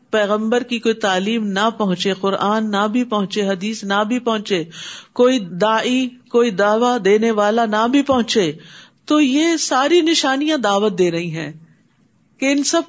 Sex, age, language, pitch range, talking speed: female, 50-69, Urdu, 205-280 Hz, 160 wpm